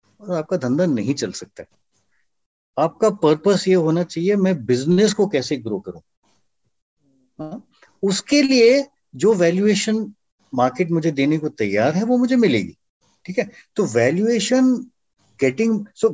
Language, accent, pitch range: Hindi, native, 145-210 Hz